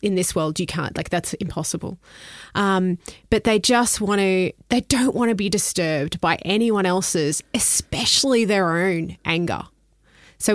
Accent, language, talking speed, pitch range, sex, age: Australian, English, 160 wpm, 165-210 Hz, female, 20-39